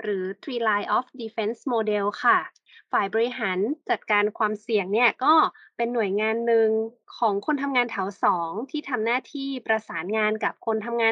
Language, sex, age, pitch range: Thai, female, 20-39, 210-270 Hz